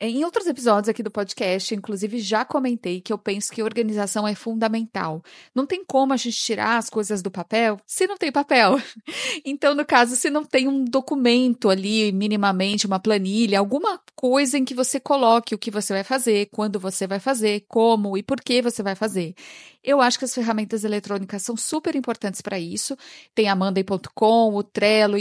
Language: Portuguese